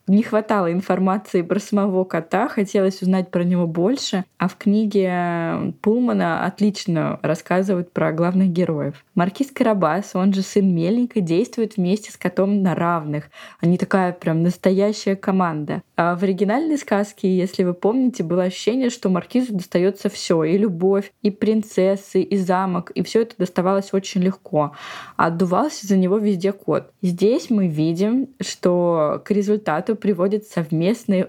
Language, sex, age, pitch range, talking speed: Russian, female, 20-39, 175-205 Hz, 140 wpm